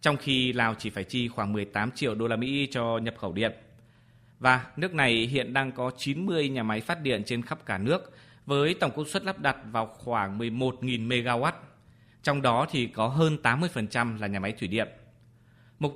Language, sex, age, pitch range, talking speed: Vietnamese, male, 20-39, 115-135 Hz, 200 wpm